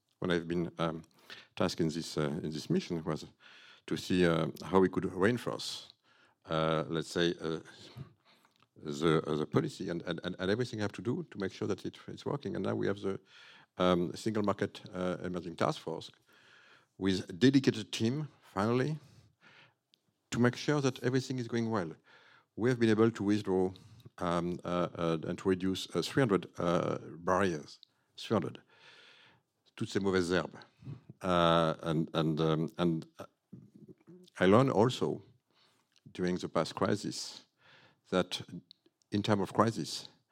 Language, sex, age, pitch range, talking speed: English, male, 60-79, 80-105 Hz, 145 wpm